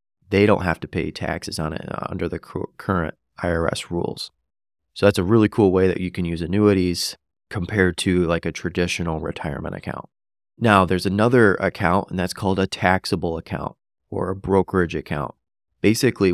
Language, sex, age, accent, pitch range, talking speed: English, male, 30-49, American, 90-100 Hz, 170 wpm